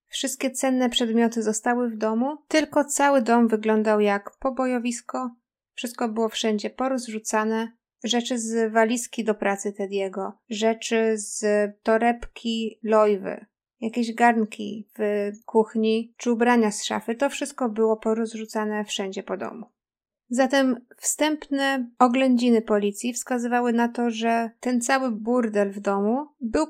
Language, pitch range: Polish, 220-260 Hz